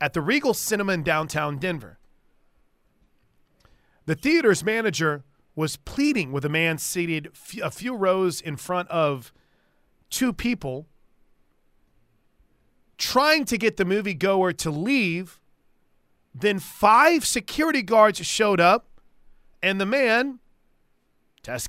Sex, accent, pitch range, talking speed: male, American, 160-225 Hz, 115 wpm